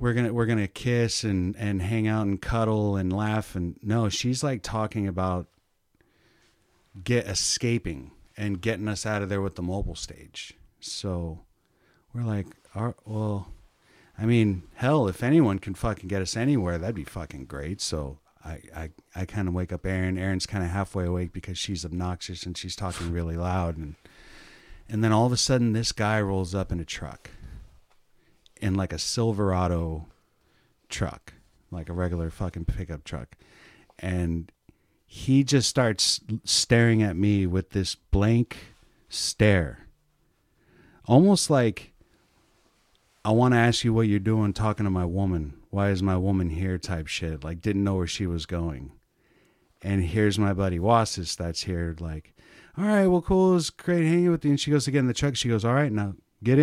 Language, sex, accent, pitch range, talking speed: English, male, American, 90-115 Hz, 180 wpm